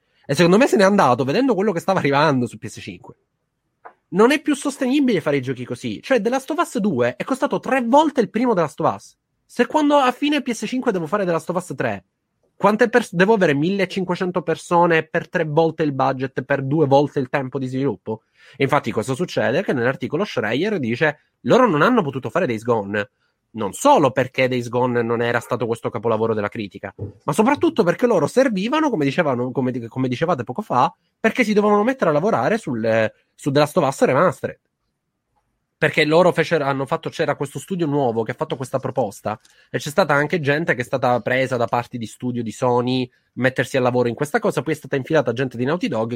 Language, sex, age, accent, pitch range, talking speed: Italian, male, 30-49, native, 125-190 Hz, 200 wpm